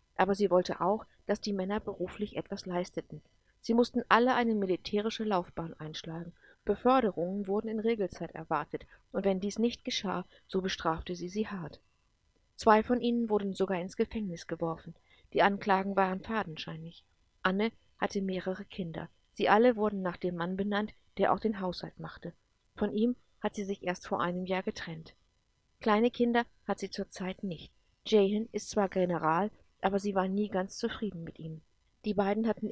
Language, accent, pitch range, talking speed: English, German, 180-220 Hz, 165 wpm